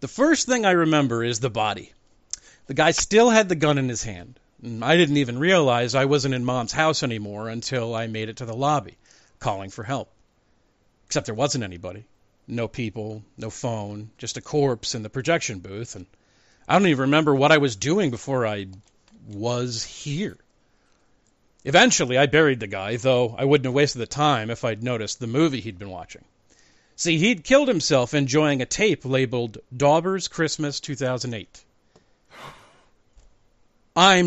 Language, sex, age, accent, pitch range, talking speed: English, male, 40-59, American, 110-155 Hz, 170 wpm